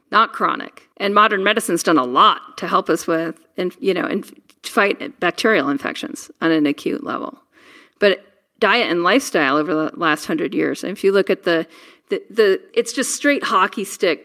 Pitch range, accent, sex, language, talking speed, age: 175-280 Hz, American, female, English, 175 wpm, 40-59